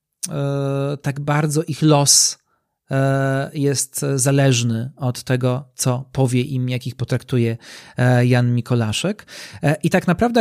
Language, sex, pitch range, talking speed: Polish, male, 125-155 Hz, 105 wpm